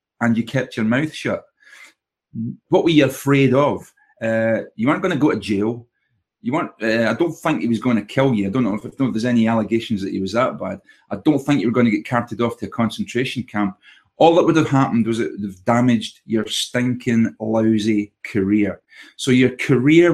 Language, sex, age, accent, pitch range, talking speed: English, male, 30-49, British, 110-130 Hz, 225 wpm